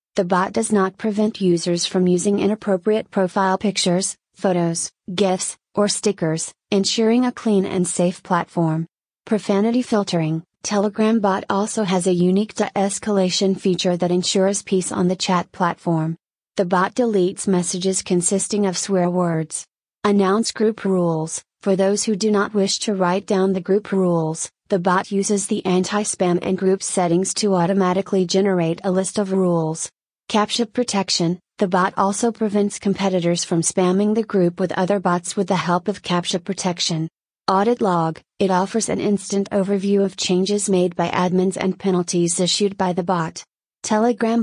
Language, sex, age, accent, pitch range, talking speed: English, female, 30-49, American, 180-205 Hz, 155 wpm